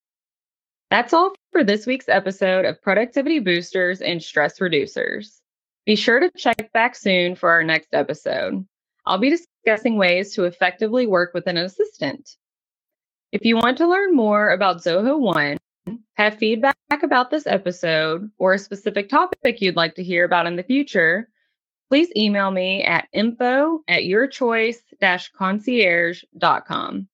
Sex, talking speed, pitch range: female, 145 wpm, 185-260 Hz